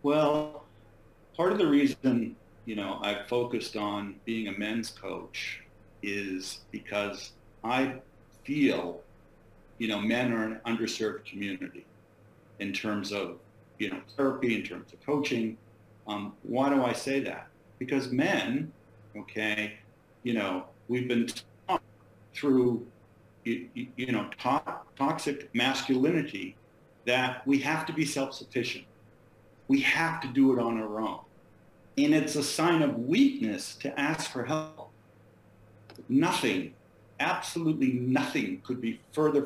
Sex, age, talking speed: male, 50-69, 130 wpm